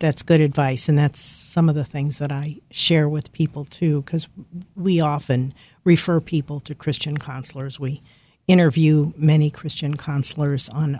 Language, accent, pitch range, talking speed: English, American, 145-180 Hz, 160 wpm